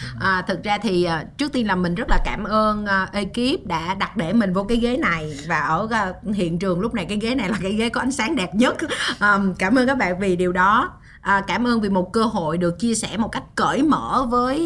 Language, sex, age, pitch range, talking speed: Vietnamese, female, 20-39, 180-240 Hz, 235 wpm